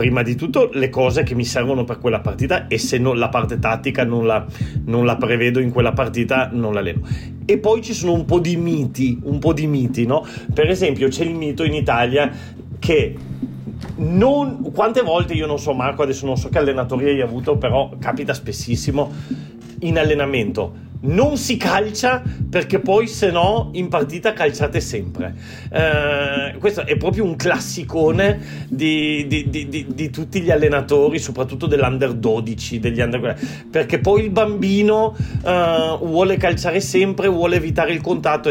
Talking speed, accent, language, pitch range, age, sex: 170 wpm, native, Italian, 120-160 Hz, 40-59, male